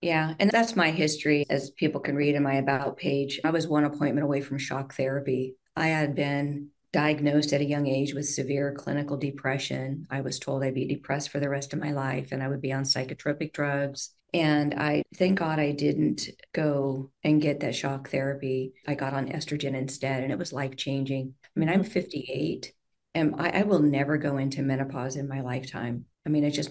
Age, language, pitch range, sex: 40-59, English, 130-150 Hz, female